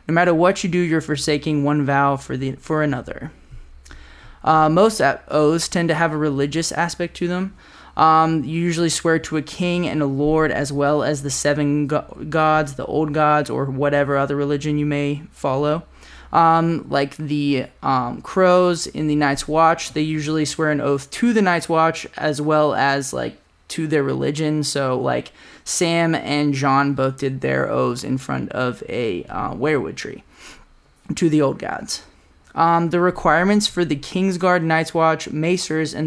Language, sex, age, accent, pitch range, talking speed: English, male, 20-39, American, 145-165 Hz, 175 wpm